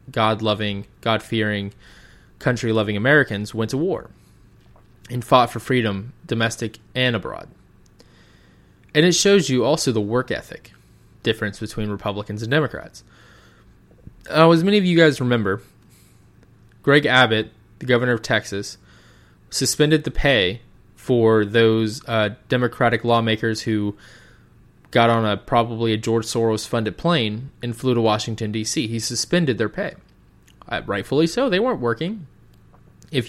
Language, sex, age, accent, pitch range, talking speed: English, male, 20-39, American, 105-125 Hz, 130 wpm